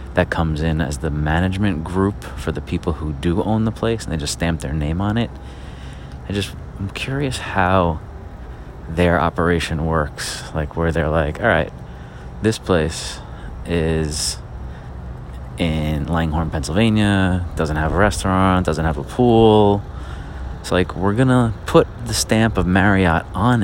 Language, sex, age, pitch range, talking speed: English, male, 30-49, 75-90 Hz, 155 wpm